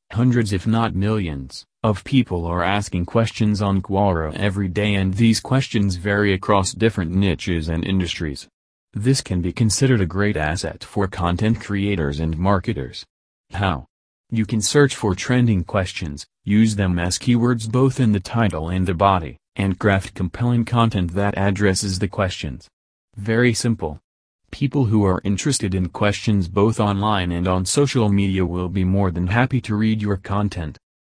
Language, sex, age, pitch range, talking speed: English, male, 30-49, 90-110 Hz, 160 wpm